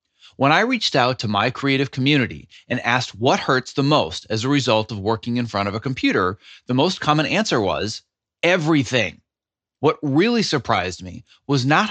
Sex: male